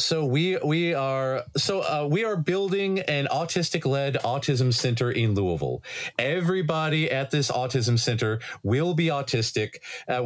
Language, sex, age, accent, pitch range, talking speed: English, male, 40-59, American, 125-150 Hz, 140 wpm